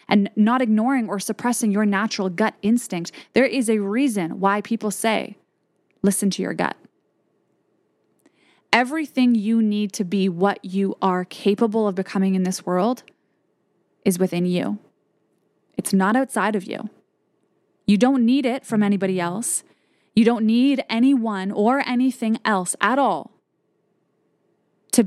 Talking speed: 140 wpm